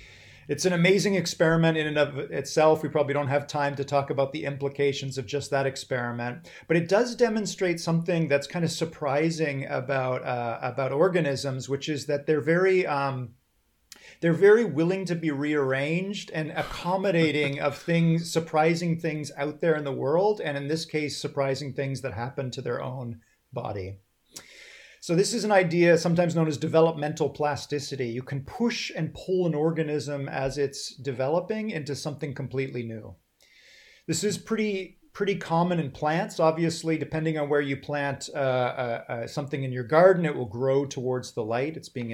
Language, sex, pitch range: English, male, 130-165 Hz